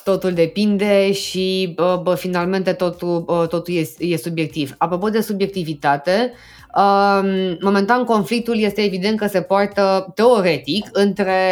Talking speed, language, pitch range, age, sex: 130 wpm, Romanian, 180-225 Hz, 20-39, female